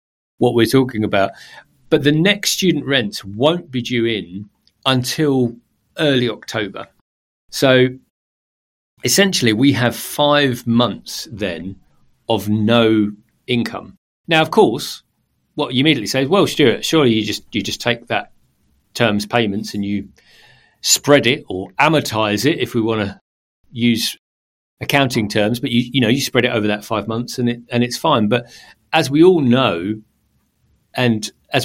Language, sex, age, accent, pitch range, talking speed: English, male, 40-59, British, 105-130 Hz, 155 wpm